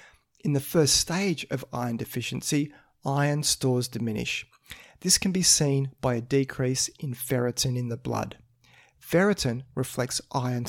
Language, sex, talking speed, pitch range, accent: English, male, 140 wpm, 125-150 Hz, Australian